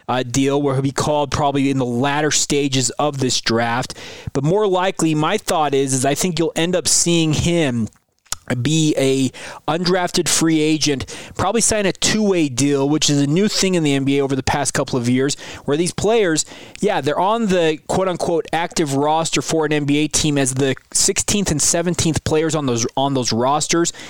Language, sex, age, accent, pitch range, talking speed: English, male, 20-39, American, 135-160 Hz, 190 wpm